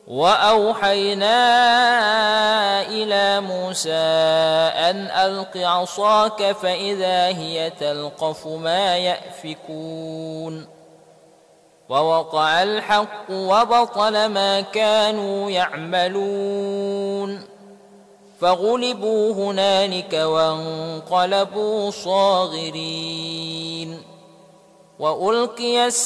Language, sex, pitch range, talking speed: Indonesian, male, 170-200 Hz, 50 wpm